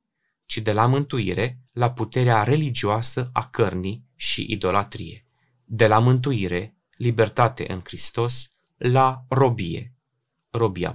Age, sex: 20-39, male